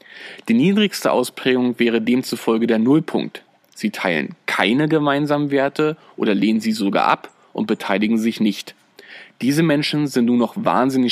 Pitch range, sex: 110-140 Hz, male